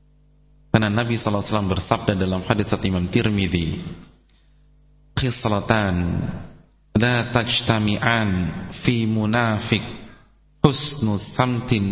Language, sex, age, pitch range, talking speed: English, male, 40-59, 100-130 Hz, 65 wpm